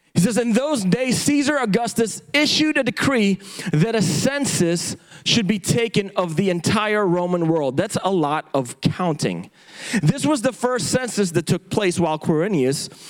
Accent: American